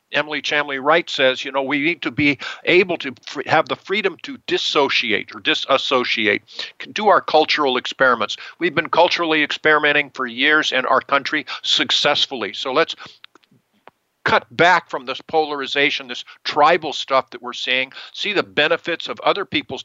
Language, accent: English, American